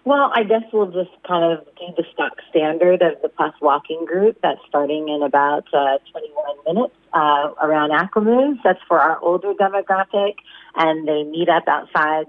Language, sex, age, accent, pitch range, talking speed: English, female, 30-49, American, 145-185 Hz, 175 wpm